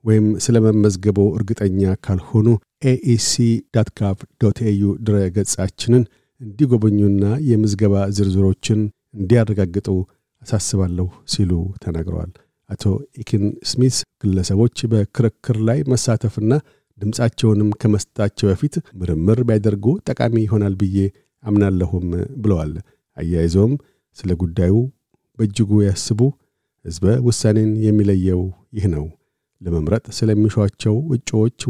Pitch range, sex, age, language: 100-115 Hz, male, 50-69, Amharic